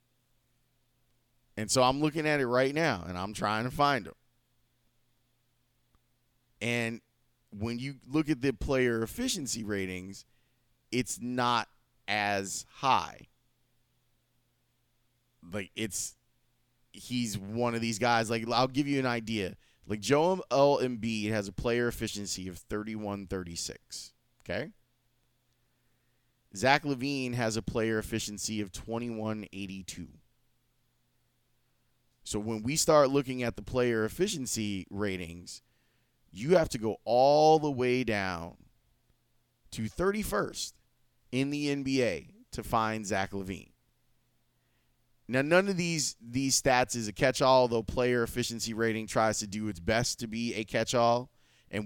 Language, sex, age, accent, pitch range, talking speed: English, male, 30-49, American, 110-130 Hz, 125 wpm